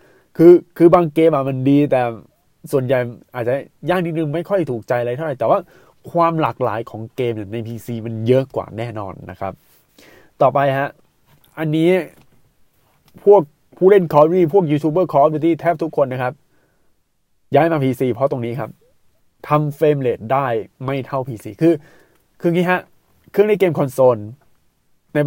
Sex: male